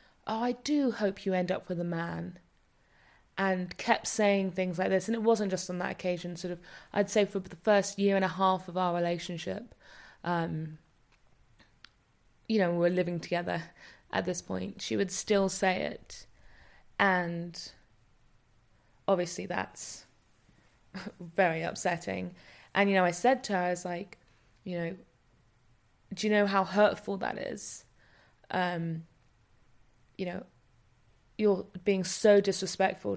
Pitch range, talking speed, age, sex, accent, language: 170-200 Hz, 150 wpm, 20-39, female, British, English